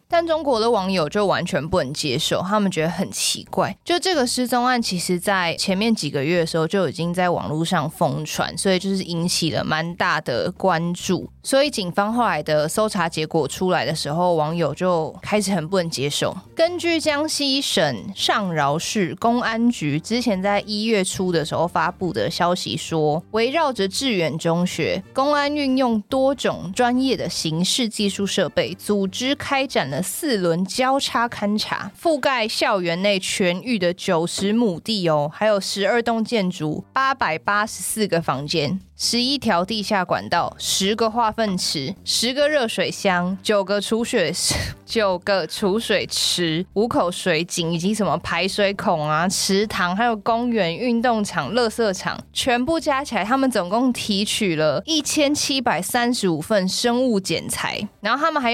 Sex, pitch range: female, 175-230 Hz